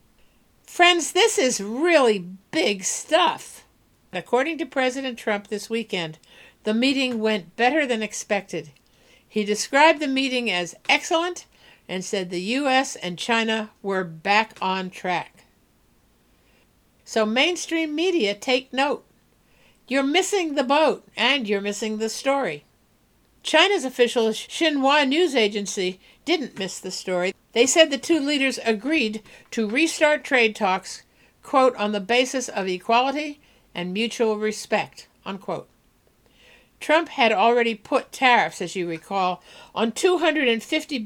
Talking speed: 125 wpm